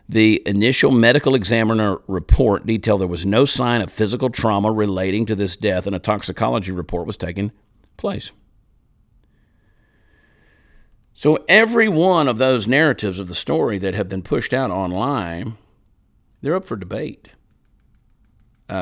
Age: 50-69